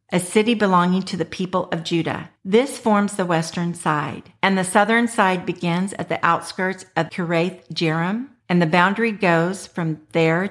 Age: 50-69